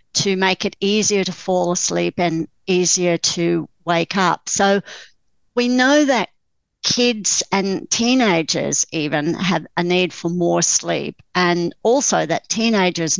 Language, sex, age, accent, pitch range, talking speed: English, female, 60-79, Australian, 170-200 Hz, 135 wpm